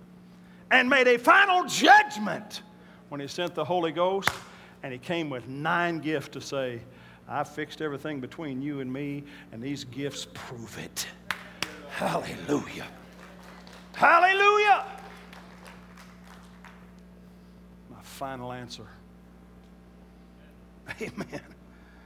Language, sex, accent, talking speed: English, male, American, 100 wpm